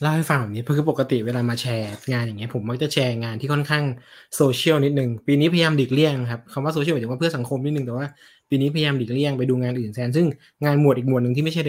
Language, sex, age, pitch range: Thai, male, 20-39, 125-155 Hz